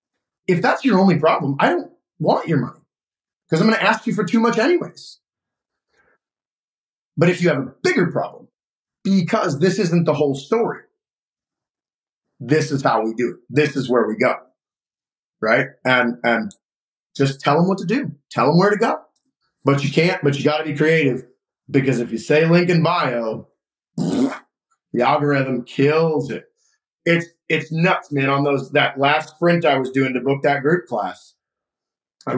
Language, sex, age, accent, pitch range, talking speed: English, male, 30-49, American, 135-170 Hz, 180 wpm